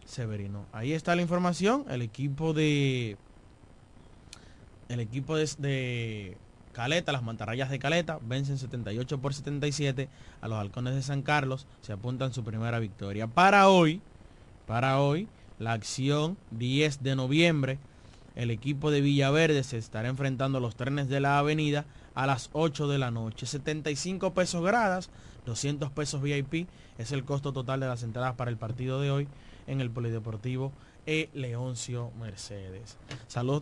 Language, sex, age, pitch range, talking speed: Spanish, male, 20-39, 115-145 Hz, 150 wpm